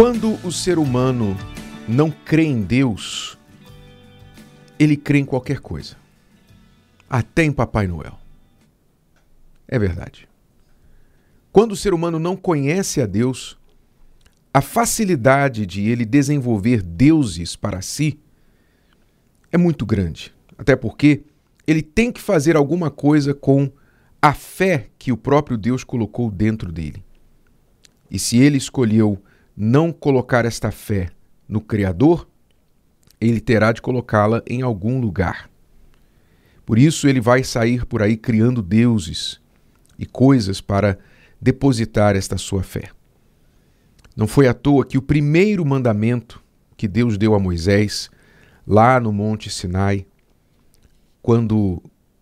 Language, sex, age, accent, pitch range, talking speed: Portuguese, male, 50-69, Brazilian, 105-140 Hz, 125 wpm